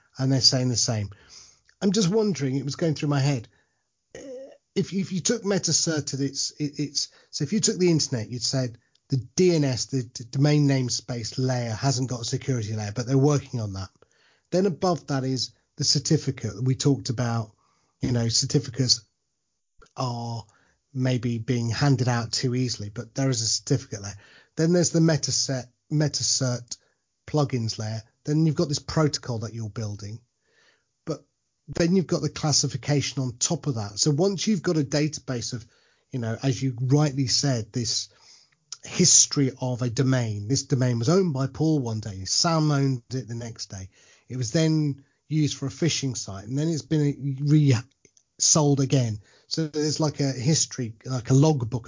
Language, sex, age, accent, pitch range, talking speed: English, male, 30-49, British, 120-150 Hz, 170 wpm